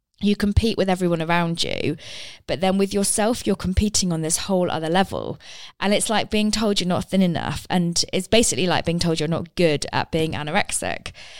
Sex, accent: female, British